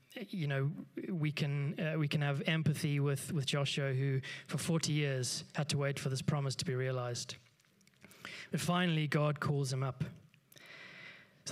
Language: English